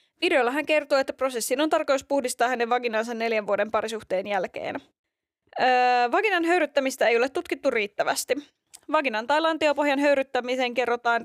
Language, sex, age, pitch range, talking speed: Finnish, female, 20-39, 230-295 Hz, 140 wpm